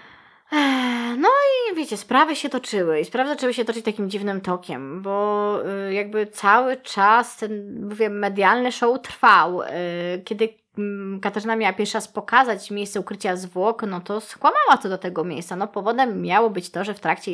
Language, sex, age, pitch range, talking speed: Polish, female, 20-39, 190-240 Hz, 165 wpm